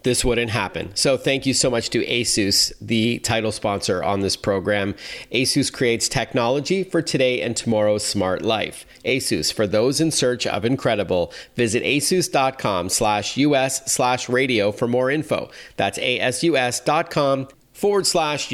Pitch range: 105-130 Hz